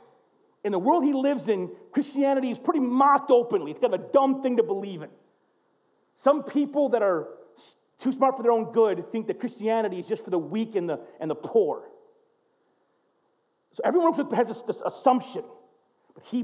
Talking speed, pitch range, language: 185 wpm, 215-305 Hz, English